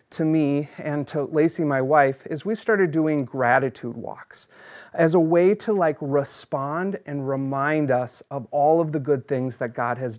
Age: 30-49